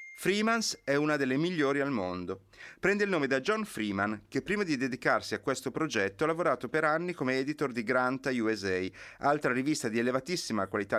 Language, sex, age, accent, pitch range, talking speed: Italian, male, 30-49, native, 110-165 Hz, 185 wpm